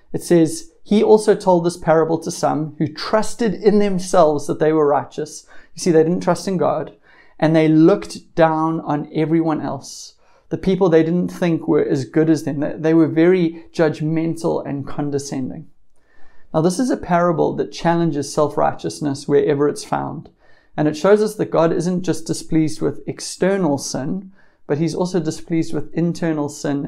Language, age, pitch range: English, 30-49, 150-175 Hz